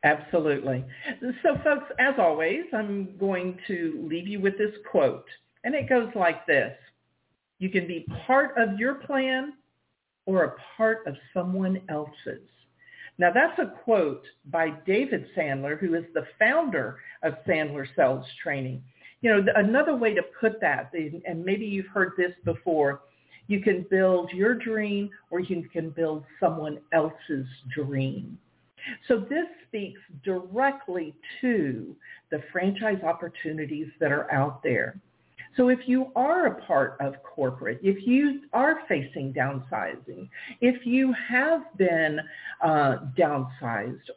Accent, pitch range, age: American, 150-240 Hz, 50-69